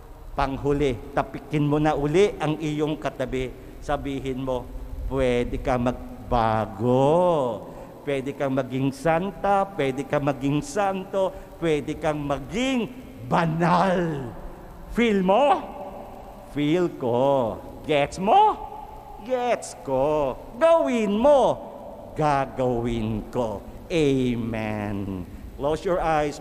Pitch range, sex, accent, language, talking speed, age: 130-175 Hz, male, Filipino, English, 95 wpm, 50-69